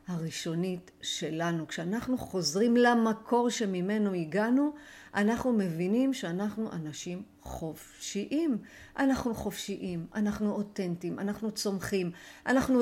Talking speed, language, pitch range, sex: 90 wpm, Hebrew, 185-240 Hz, female